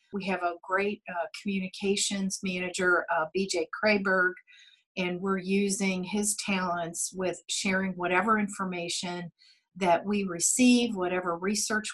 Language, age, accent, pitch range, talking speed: English, 50-69, American, 175-195 Hz, 120 wpm